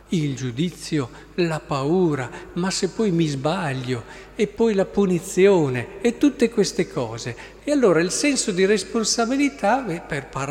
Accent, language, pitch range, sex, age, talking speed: native, Italian, 145-210 Hz, male, 50-69, 145 wpm